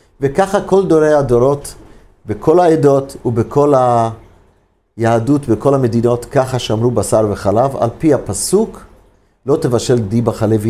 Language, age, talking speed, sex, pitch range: Hebrew, 50-69, 120 wpm, male, 105-150 Hz